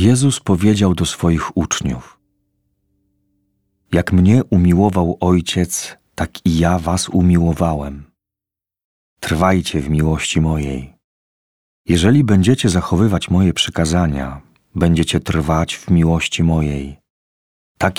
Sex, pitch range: male, 80-95 Hz